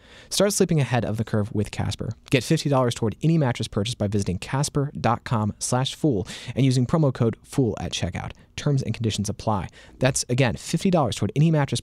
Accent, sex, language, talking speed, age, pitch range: American, male, English, 180 wpm, 30-49, 100-130 Hz